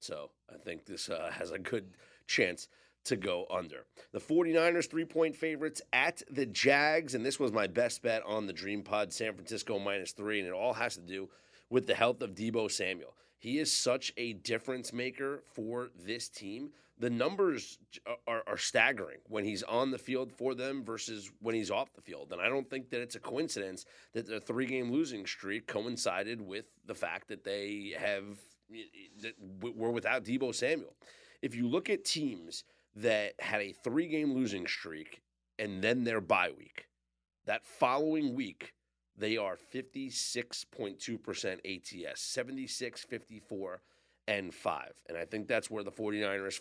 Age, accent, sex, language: 30-49, American, male, English